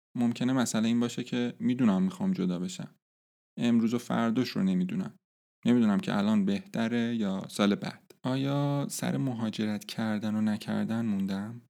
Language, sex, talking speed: Persian, male, 145 wpm